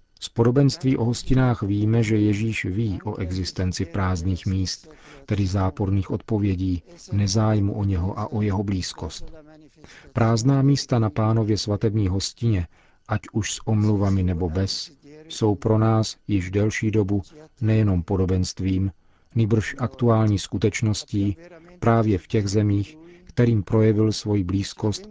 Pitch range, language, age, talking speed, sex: 95-115 Hz, Czech, 40-59, 125 wpm, male